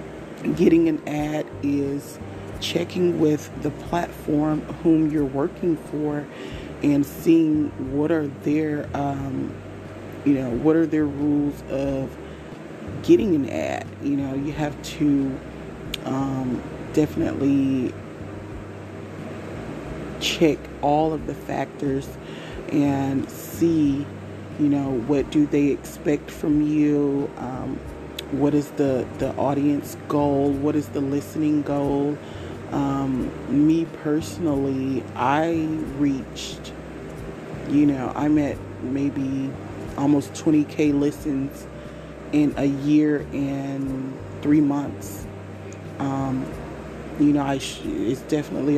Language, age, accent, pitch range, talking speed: English, 30-49, American, 120-150 Hz, 110 wpm